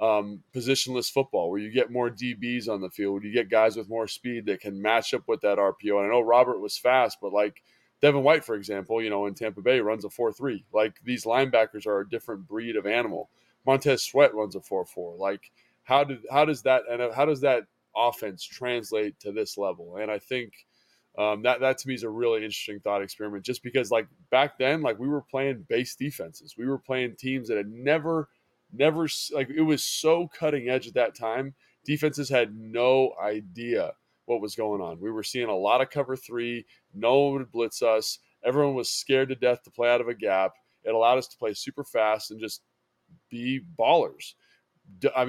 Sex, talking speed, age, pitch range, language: male, 215 wpm, 20-39, 110-135 Hz, English